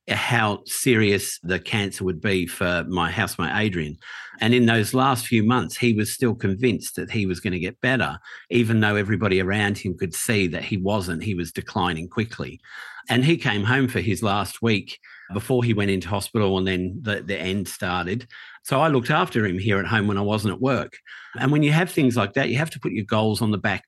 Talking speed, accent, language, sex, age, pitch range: 225 wpm, Australian, English, male, 50-69, 100-125 Hz